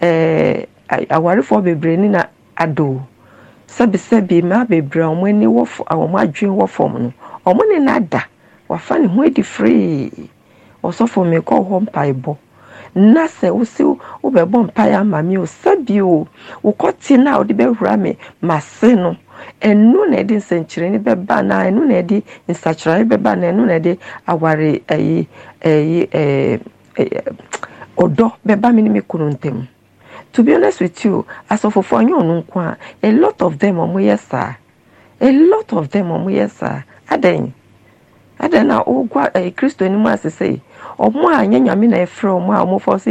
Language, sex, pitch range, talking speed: English, female, 165-220 Hz, 155 wpm